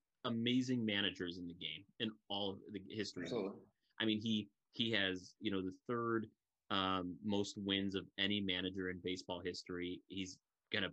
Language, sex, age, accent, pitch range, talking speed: English, male, 30-49, American, 95-110 Hz, 170 wpm